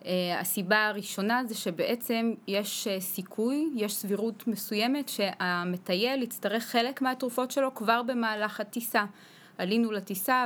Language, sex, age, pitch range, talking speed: Hebrew, female, 20-39, 185-230 Hz, 120 wpm